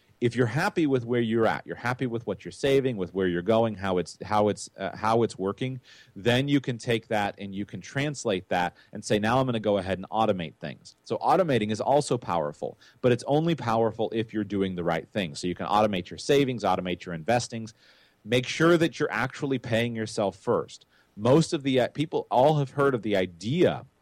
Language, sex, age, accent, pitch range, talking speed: English, male, 30-49, American, 95-125 Hz, 220 wpm